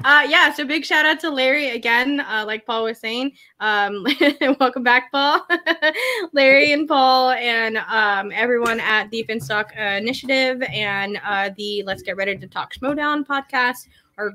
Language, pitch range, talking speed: English, 205-270 Hz, 165 wpm